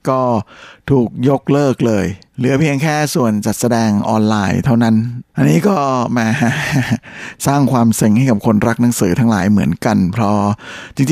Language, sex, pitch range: Thai, male, 105-125 Hz